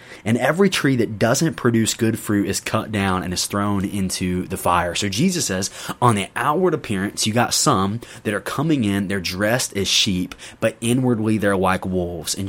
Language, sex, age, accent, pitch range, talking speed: English, male, 20-39, American, 95-115 Hz, 195 wpm